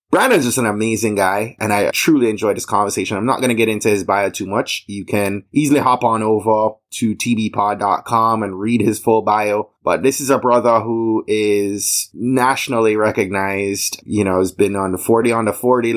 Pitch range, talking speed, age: 100-120 Hz, 200 wpm, 20-39